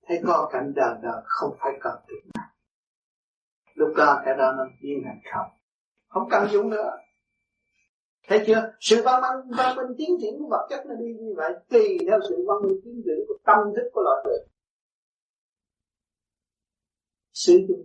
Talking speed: 140 wpm